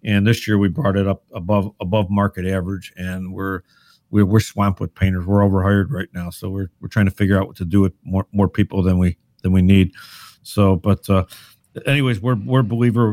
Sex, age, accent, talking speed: male, 50-69, American, 220 wpm